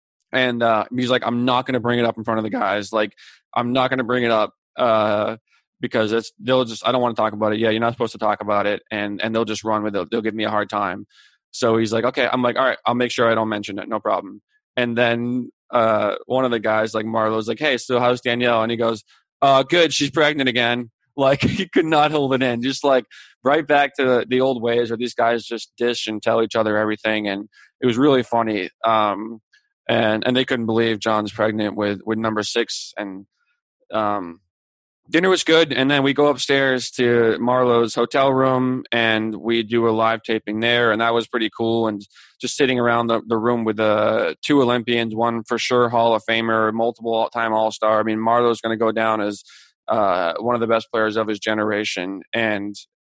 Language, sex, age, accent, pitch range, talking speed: English, male, 20-39, American, 110-125 Hz, 230 wpm